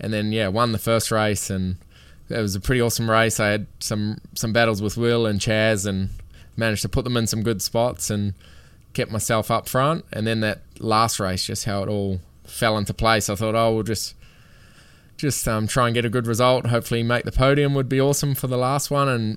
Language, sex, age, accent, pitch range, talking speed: English, male, 20-39, Australian, 105-120 Hz, 230 wpm